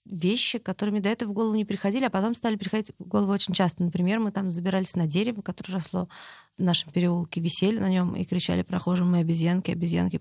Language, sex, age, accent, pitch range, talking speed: Russian, female, 20-39, native, 175-200 Hz, 210 wpm